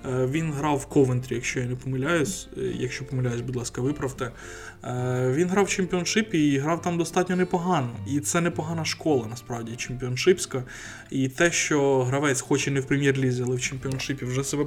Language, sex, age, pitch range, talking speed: Ukrainian, male, 20-39, 125-160 Hz, 170 wpm